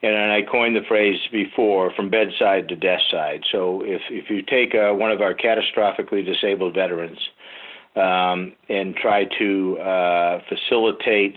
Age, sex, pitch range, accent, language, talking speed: 50-69, male, 85-100 Hz, American, English, 150 wpm